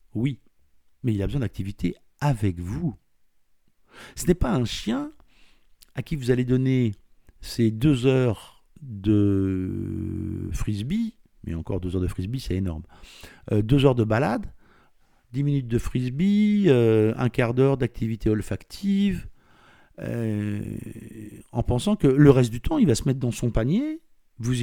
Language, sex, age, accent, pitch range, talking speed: French, male, 50-69, French, 95-125 Hz, 150 wpm